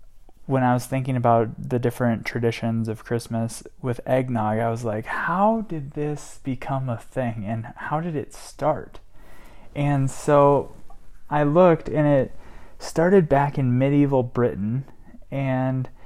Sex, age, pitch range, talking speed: male, 20-39, 120-145 Hz, 140 wpm